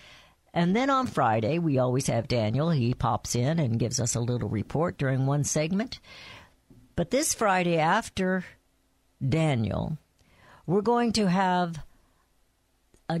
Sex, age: female, 50-69